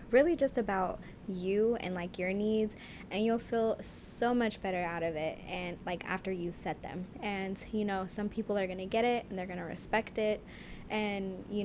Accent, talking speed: American, 210 wpm